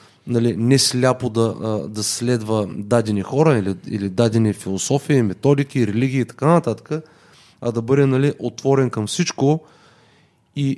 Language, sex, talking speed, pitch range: Bulgarian, male, 140 wpm, 115-145 Hz